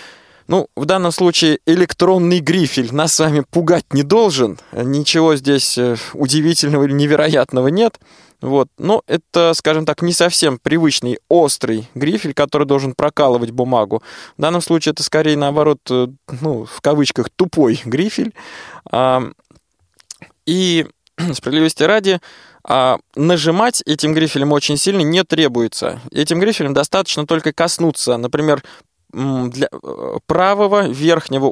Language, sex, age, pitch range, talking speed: Russian, male, 20-39, 140-175 Hz, 120 wpm